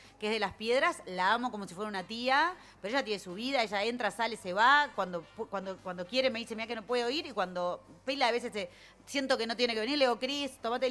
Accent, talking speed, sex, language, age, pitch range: Argentinian, 270 wpm, female, Spanish, 30-49, 190-250 Hz